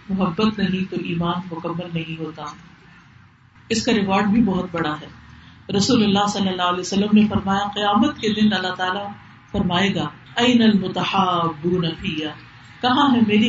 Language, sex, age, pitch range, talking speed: Urdu, female, 50-69, 170-225 Hz, 60 wpm